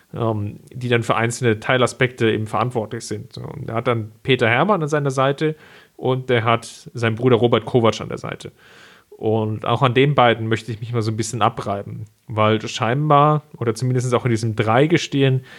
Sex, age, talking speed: male, 40-59, 185 wpm